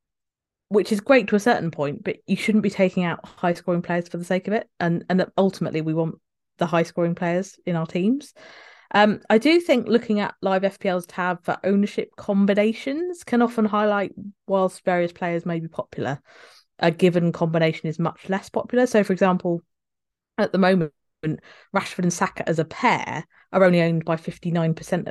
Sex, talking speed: female, 185 wpm